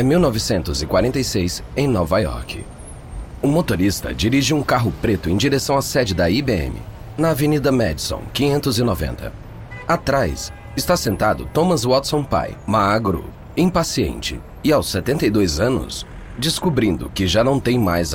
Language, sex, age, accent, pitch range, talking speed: Portuguese, male, 40-59, Brazilian, 90-135 Hz, 130 wpm